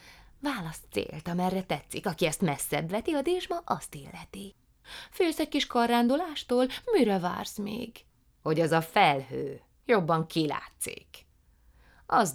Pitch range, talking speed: 145-220 Hz, 125 wpm